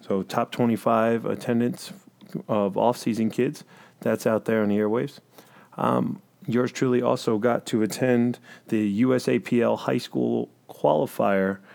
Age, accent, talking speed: 30-49, American, 130 wpm